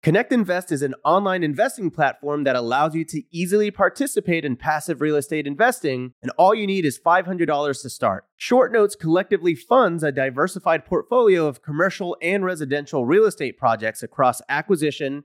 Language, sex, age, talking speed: English, male, 30-49, 155 wpm